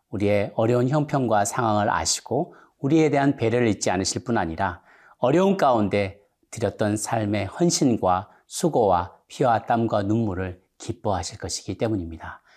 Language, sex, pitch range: Korean, male, 95-125 Hz